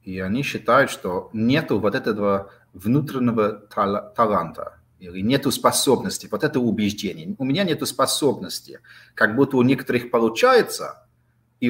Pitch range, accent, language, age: 100-135 Hz, native, Russian, 30-49